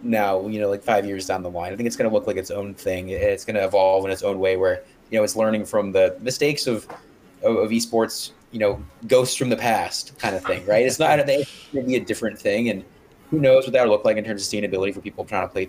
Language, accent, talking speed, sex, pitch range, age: English, American, 285 wpm, male, 100-155 Hz, 20-39